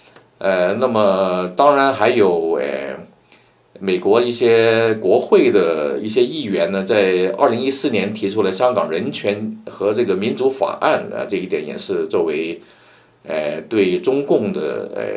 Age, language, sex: 50-69, Chinese, male